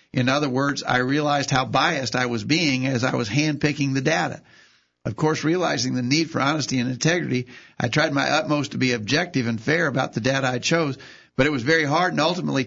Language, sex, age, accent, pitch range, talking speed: English, male, 50-69, American, 130-150 Hz, 220 wpm